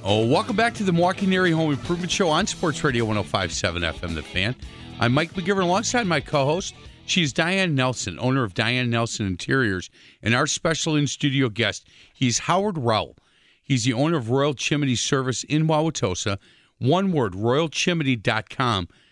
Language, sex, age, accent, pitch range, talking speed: English, male, 40-59, American, 110-150 Hz, 160 wpm